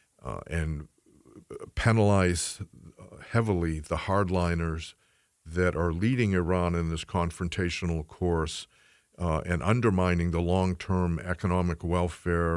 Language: English